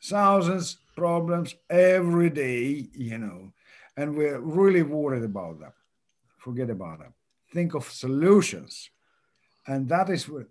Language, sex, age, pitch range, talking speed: English, male, 50-69, 125-180 Hz, 130 wpm